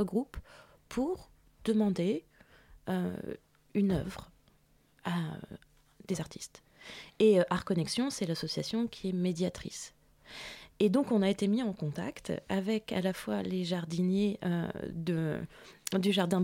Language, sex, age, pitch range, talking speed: French, female, 20-39, 170-205 Hz, 130 wpm